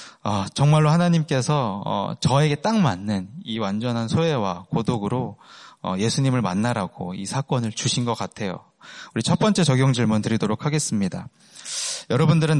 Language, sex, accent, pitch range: Korean, male, native, 110-155 Hz